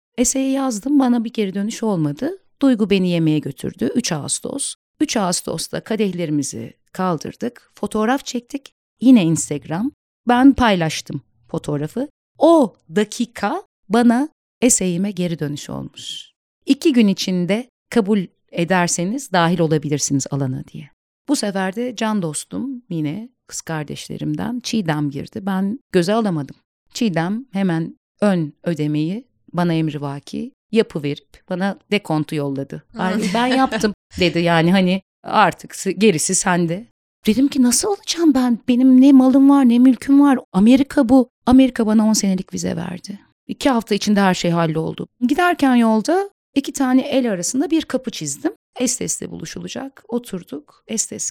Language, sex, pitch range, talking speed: Turkish, female, 175-255 Hz, 135 wpm